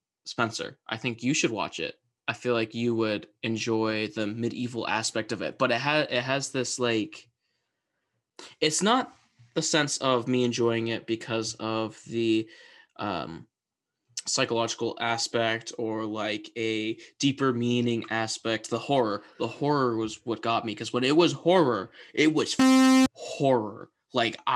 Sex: male